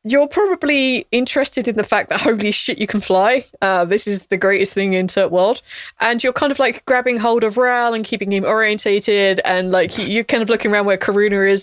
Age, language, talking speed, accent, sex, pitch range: 20-39, English, 225 wpm, British, female, 180-215 Hz